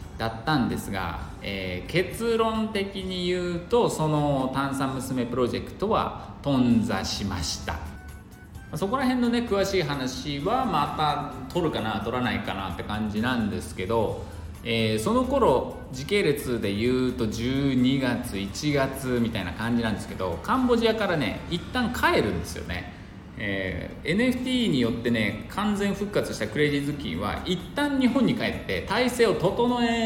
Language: Japanese